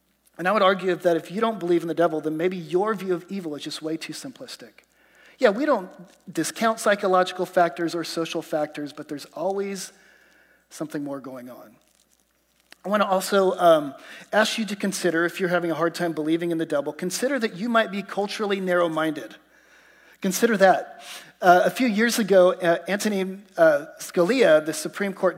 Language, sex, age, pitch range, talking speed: English, male, 40-59, 175-235 Hz, 185 wpm